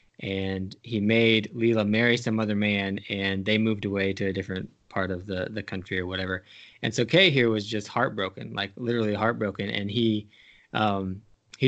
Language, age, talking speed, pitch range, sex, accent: English, 20-39, 185 wpm, 100-115 Hz, male, American